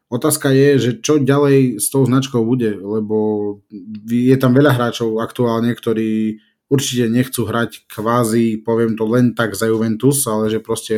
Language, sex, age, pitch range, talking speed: Slovak, male, 20-39, 110-130 Hz, 160 wpm